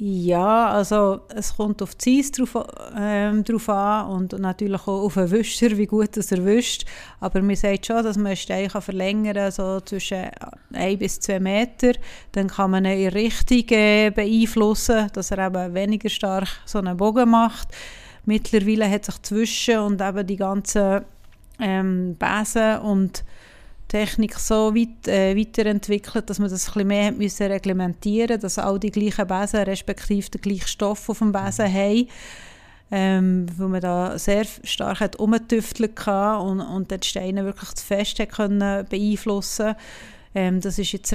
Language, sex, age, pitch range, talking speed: German, female, 30-49, 195-215 Hz, 160 wpm